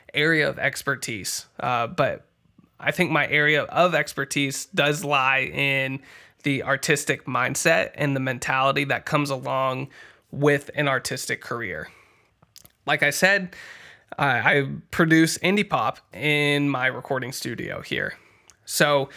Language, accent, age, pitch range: English, American, 20-39, 135-150 Hz